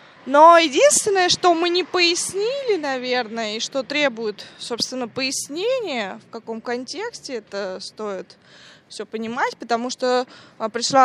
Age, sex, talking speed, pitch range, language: 20-39, female, 120 wpm, 225-295 Hz, Russian